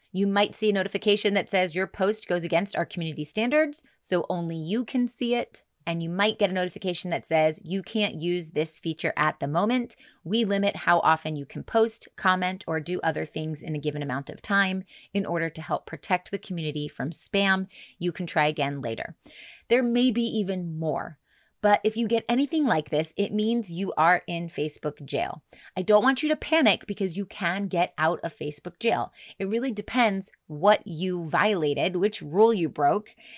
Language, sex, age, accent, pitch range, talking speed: English, female, 30-49, American, 160-210 Hz, 200 wpm